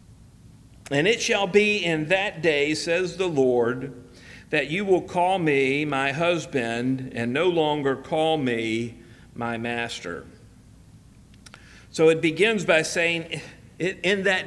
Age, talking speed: 50-69, 130 wpm